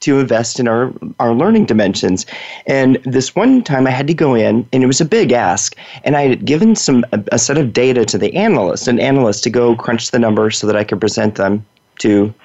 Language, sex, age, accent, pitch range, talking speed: English, male, 30-49, American, 110-135 Hz, 235 wpm